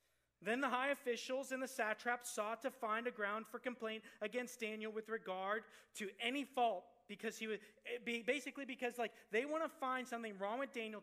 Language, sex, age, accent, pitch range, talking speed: English, male, 30-49, American, 140-215 Hz, 190 wpm